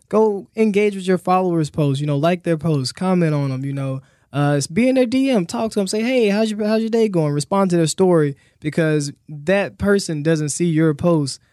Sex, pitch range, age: male, 140-170 Hz, 20-39